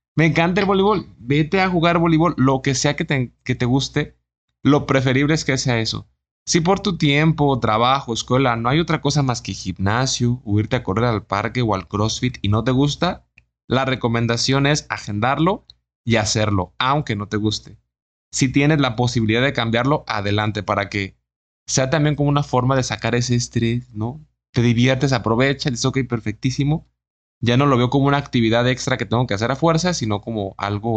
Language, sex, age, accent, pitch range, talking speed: Spanish, male, 20-39, Mexican, 110-145 Hz, 195 wpm